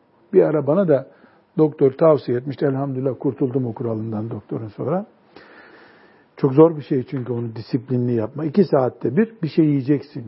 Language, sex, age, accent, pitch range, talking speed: Turkish, male, 60-79, native, 140-195 Hz, 150 wpm